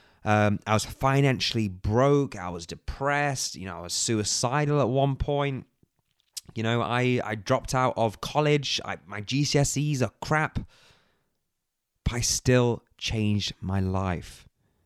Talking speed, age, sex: 135 wpm, 20-39, male